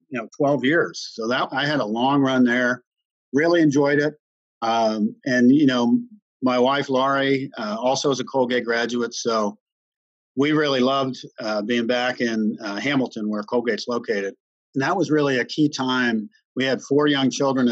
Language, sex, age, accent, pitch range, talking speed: English, male, 50-69, American, 110-140 Hz, 180 wpm